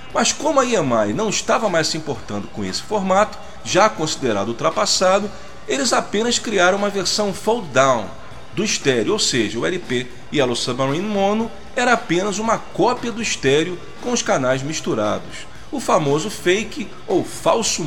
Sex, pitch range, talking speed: male, 155-225 Hz, 150 wpm